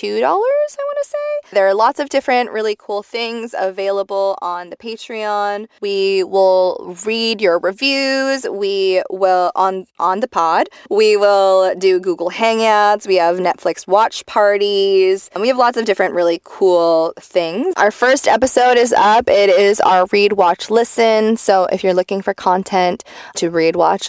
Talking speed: 165 wpm